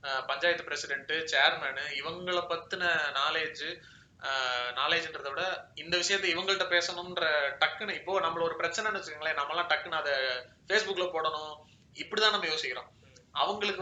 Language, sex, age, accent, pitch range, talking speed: Tamil, male, 30-49, native, 150-195 Hz, 95 wpm